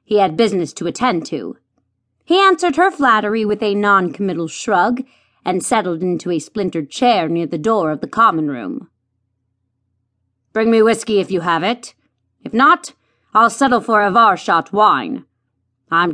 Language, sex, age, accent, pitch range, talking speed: English, female, 30-49, American, 165-240 Hz, 160 wpm